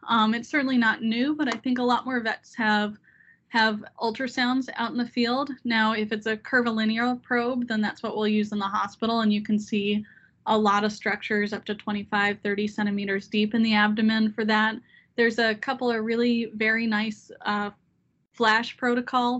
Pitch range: 210-240 Hz